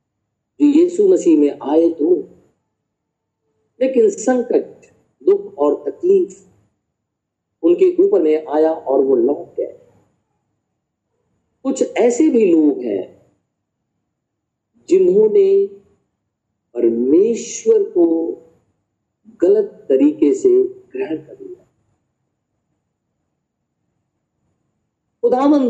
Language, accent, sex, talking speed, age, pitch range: Hindi, native, male, 80 wpm, 50-69, 245-405 Hz